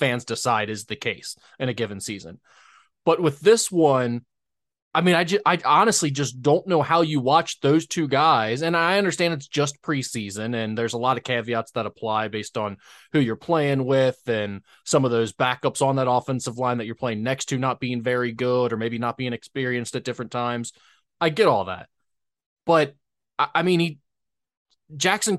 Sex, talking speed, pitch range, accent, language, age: male, 200 wpm, 125-175 Hz, American, English, 20-39